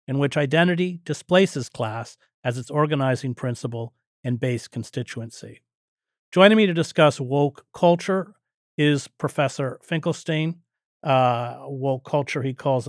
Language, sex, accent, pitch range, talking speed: English, male, American, 125-155 Hz, 120 wpm